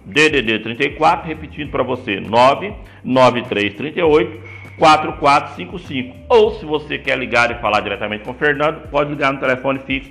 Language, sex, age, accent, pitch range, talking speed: Portuguese, male, 60-79, Brazilian, 110-150 Hz, 140 wpm